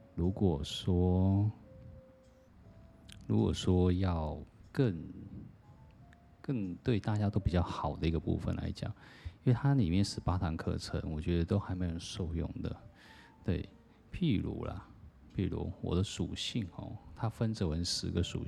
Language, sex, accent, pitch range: Chinese, male, native, 80-105 Hz